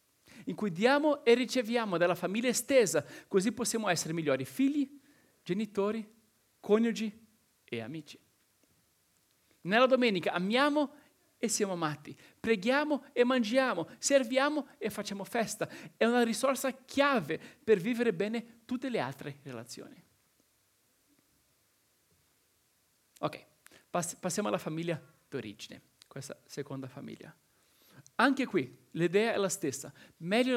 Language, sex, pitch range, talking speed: Italian, male, 165-245 Hz, 110 wpm